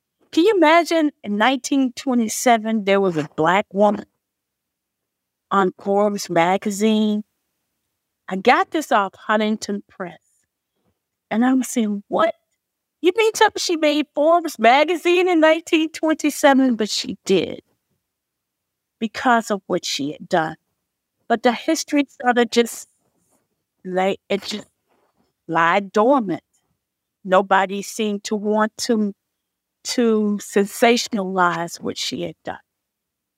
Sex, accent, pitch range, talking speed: female, American, 195-250 Hz, 110 wpm